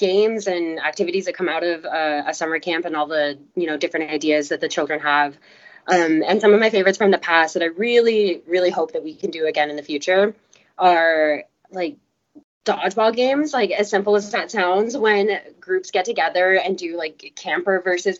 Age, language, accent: 20-39, English, American